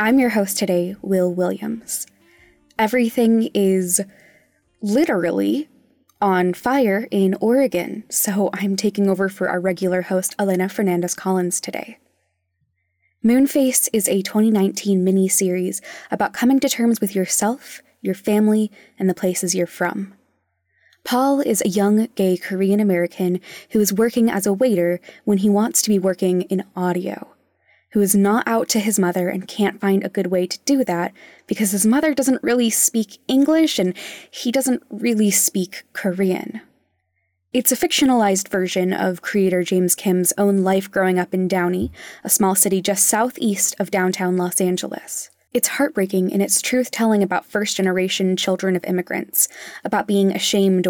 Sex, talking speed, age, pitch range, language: female, 150 wpm, 20-39, 185-220 Hz, English